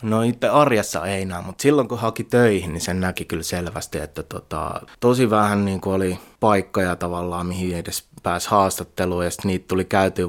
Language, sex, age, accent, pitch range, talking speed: Finnish, male, 20-39, native, 90-105 Hz, 185 wpm